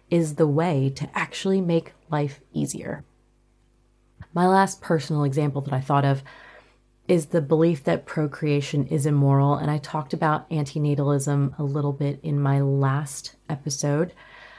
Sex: female